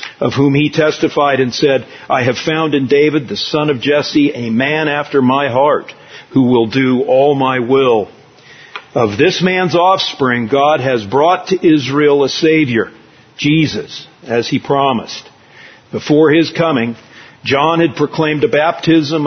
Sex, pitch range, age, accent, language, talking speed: male, 135-170 Hz, 50-69, American, English, 155 wpm